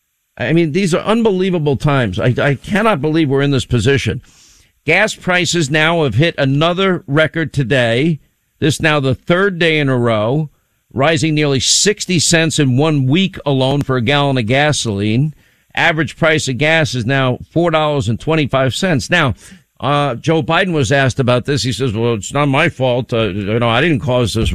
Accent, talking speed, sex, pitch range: American, 175 wpm, male, 130-165 Hz